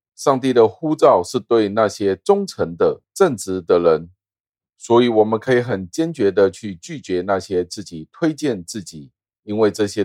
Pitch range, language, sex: 95-120 Hz, Chinese, male